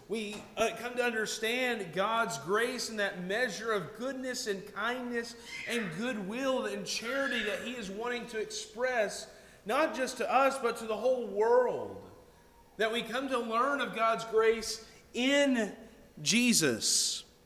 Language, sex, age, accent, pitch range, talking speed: English, male, 40-59, American, 195-245 Hz, 145 wpm